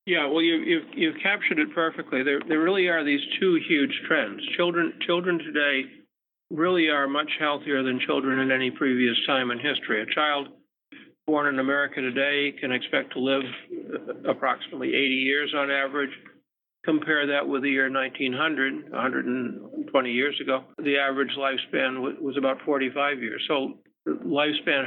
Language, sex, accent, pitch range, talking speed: English, male, American, 130-150 Hz, 155 wpm